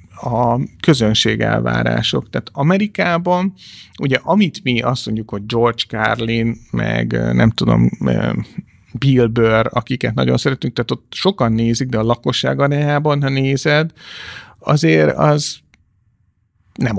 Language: Hungarian